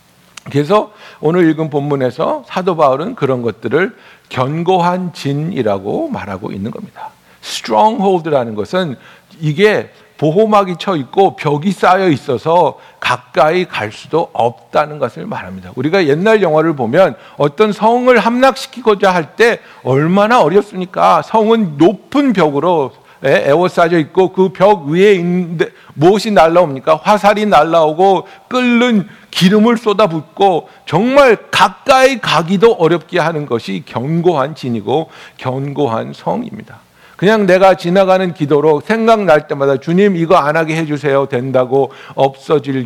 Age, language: 60-79, Korean